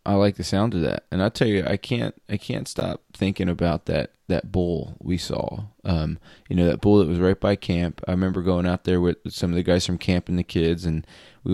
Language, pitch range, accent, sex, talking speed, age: English, 90-105 Hz, American, male, 255 wpm, 20-39